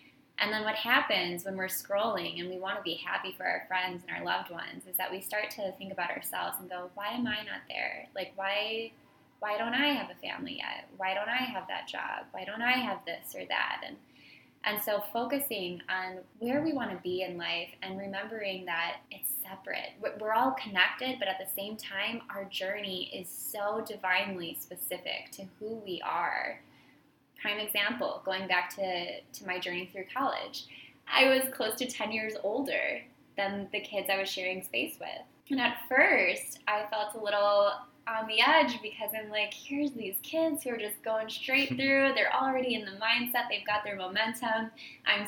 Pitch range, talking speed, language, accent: 195-240 Hz, 195 wpm, English, American